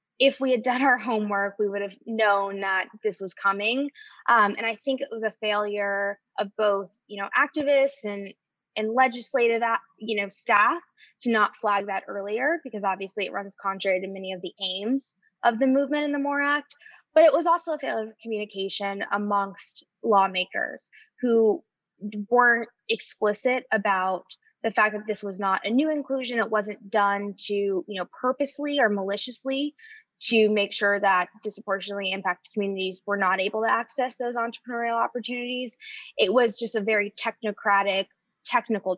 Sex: female